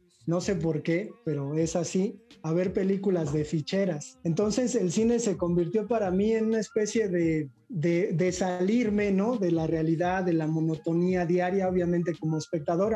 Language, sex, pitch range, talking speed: Spanish, male, 165-205 Hz, 170 wpm